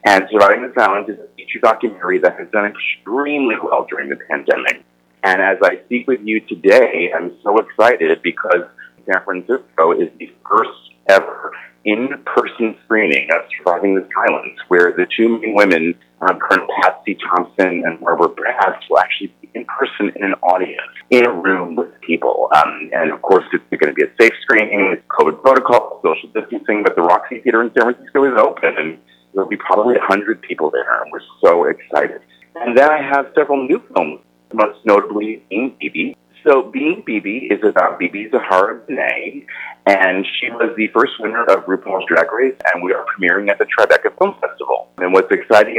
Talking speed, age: 185 wpm, 30-49